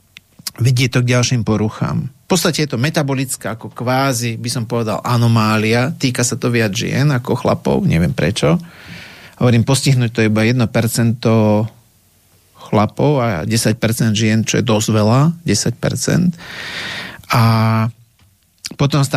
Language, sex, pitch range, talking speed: Slovak, male, 110-130 Hz, 130 wpm